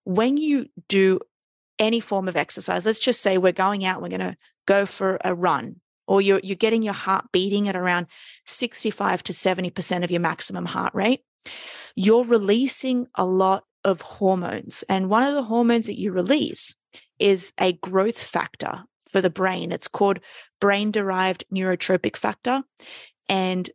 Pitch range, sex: 185-220 Hz, female